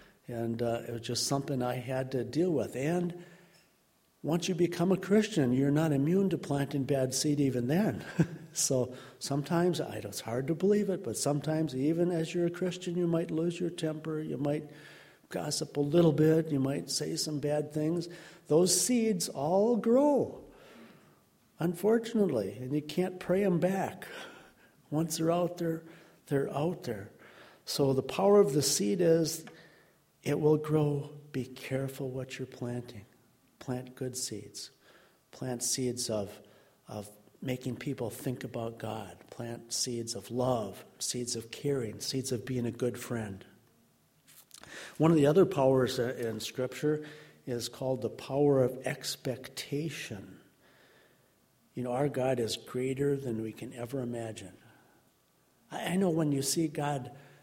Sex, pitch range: male, 125-165 Hz